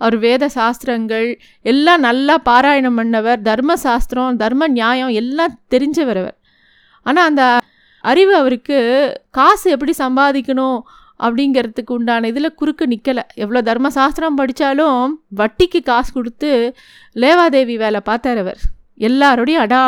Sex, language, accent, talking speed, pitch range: female, Tamil, native, 110 wpm, 235-295 Hz